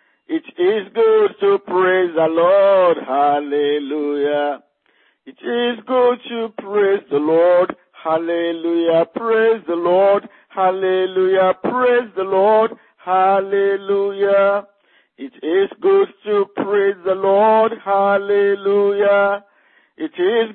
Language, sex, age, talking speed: English, male, 50-69, 100 wpm